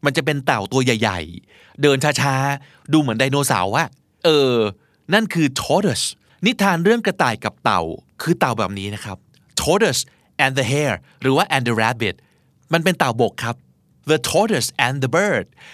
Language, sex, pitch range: Thai, male, 120-175 Hz